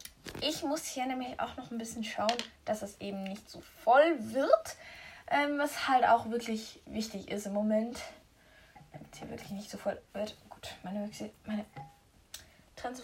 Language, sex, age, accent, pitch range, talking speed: German, female, 10-29, German, 215-260 Hz, 175 wpm